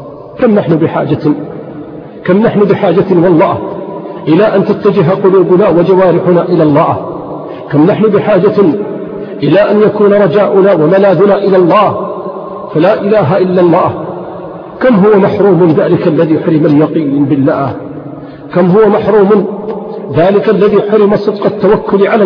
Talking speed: 120 wpm